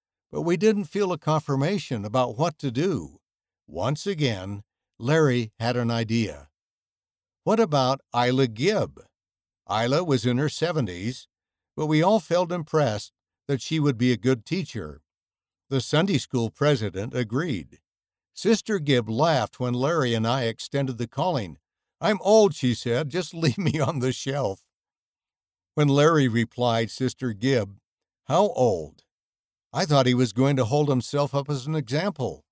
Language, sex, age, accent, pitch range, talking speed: English, male, 60-79, American, 115-150 Hz, 150 wpm